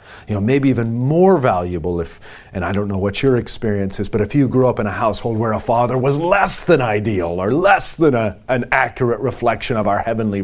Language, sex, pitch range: English, male, 100-130 Hz